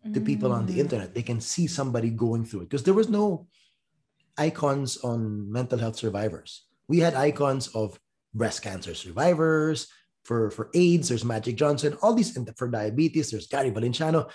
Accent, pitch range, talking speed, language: Filipino, 115-155 Hz, 175 wpm, English